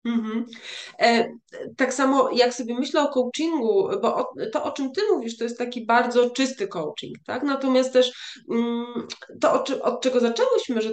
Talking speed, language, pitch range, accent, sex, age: 175 wpm, Polish, 220-260 Hz, native, female, 20-39